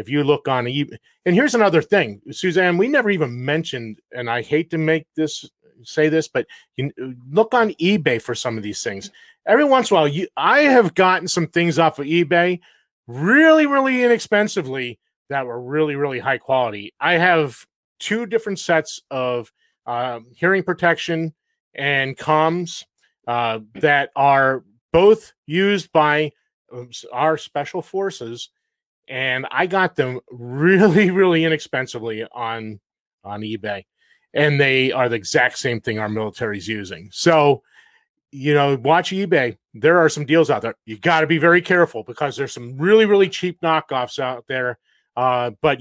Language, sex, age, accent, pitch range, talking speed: English, male, 30-49, American, 125-175 Hz, 160 wpm